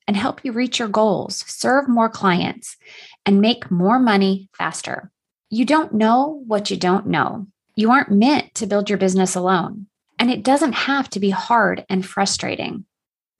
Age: 20-39